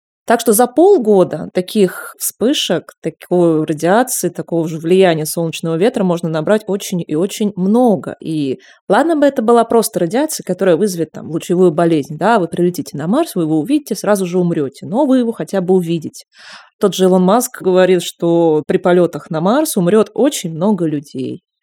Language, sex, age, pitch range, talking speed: Russian, female, 20-39, 165-220 Hz, 170 wpm